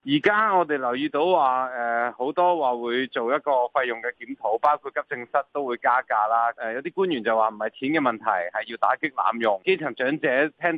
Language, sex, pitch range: Chinese, male, 120-160 Hz